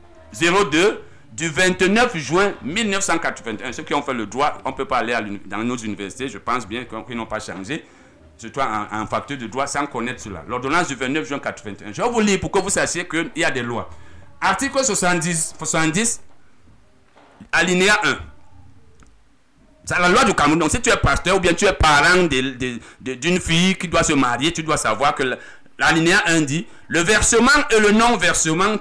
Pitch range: 140-210 Hz